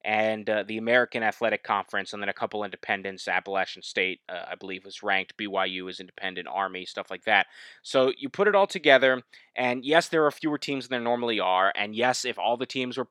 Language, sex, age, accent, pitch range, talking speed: English, male, 20-39, American, 105-135 Hz, 220 wpm